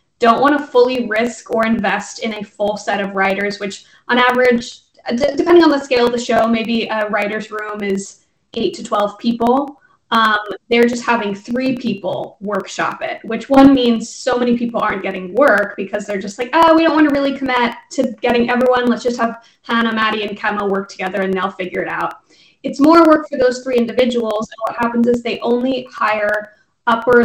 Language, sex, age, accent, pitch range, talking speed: English, female, 10-29, American, 210-250 Hz, 205 wpm